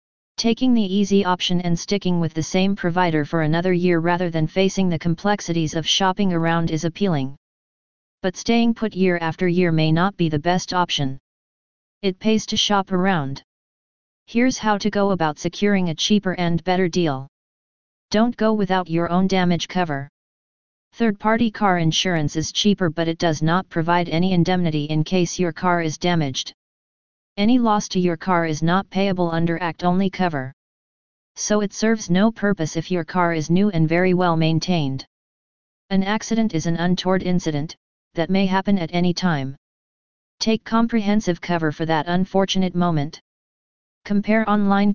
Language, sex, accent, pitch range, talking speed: English, female, American, 165-195 Hz, 165 wpm